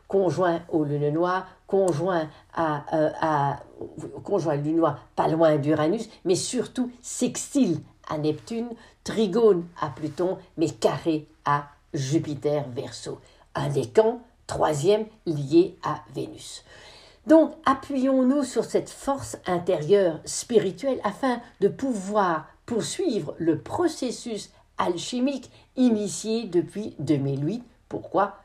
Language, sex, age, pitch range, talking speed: French, female, 60-79, 155-225 Hz, 110 wpm